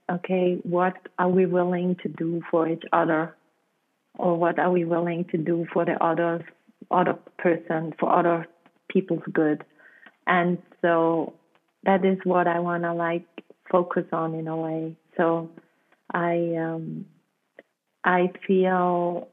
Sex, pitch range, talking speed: female, 170-190 Hz, 140 wpm